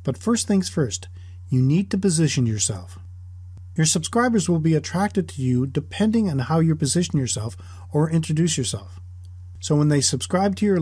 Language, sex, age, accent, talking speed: English, male, 40-59, American, 170 wpm